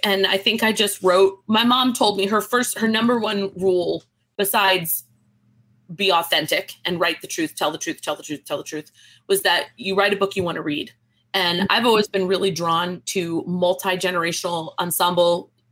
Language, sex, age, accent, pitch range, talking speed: English, female, 30-49, American, 170-220 Hz, 195 wpm